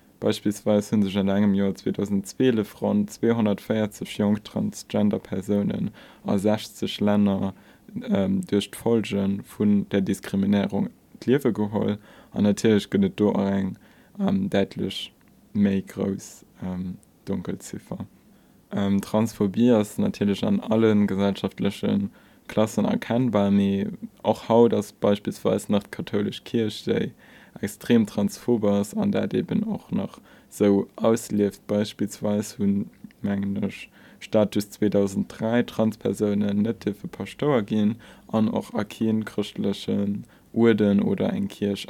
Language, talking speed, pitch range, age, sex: English, 110 wpm, 100-115 Hz, 20-39, male